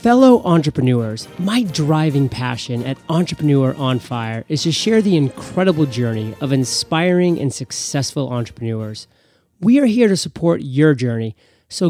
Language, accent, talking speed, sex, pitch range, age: English, American, 140 wpm, male, 130-180 Hz, 30-49